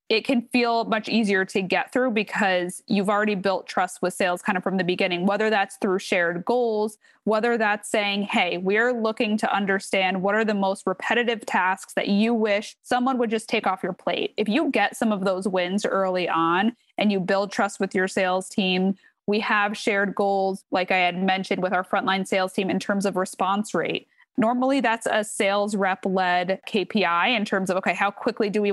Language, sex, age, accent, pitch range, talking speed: English, female, 20-39, American, 190-225 Hz, 205 wpm